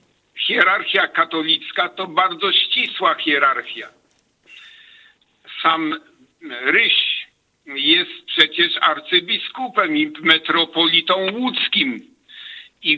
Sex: male